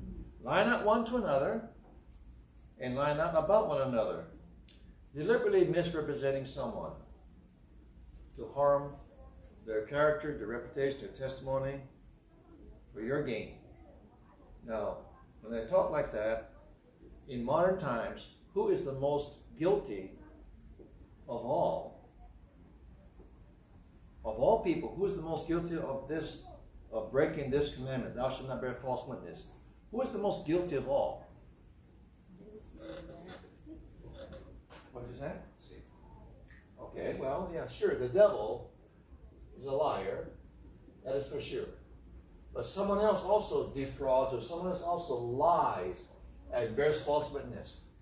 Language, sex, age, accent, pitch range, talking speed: English, male, 60-79, American, 115-170 Hz, 120 wpm